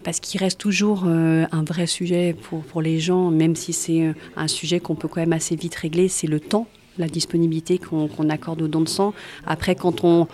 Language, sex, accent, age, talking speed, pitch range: French, female, French, 40-59, 225 wpm, 165-190 Hz